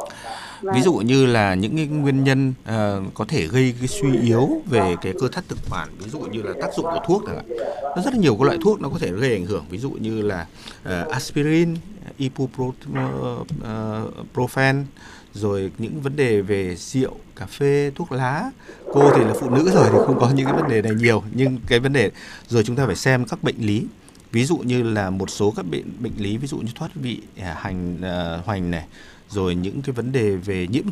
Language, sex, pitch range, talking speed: Vietnamese, male, 100-140 Hz, 225 wpm